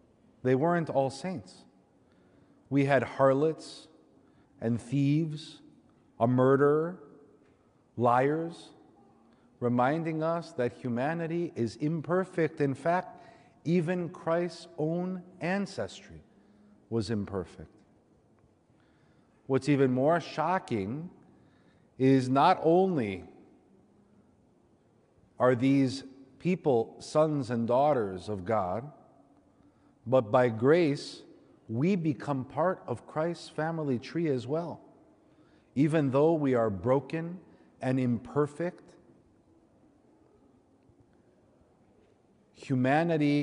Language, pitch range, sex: English, 120-165 Hz, male